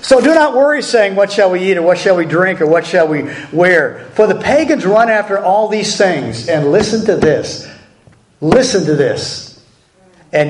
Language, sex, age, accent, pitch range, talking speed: English, male, 50-69, American, 135-185 Hz, 200 wpm